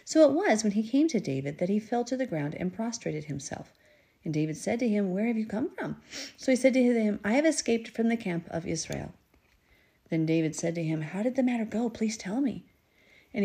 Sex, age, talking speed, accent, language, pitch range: female, 40-59, 240 wpm, American, English, 170-235 Hz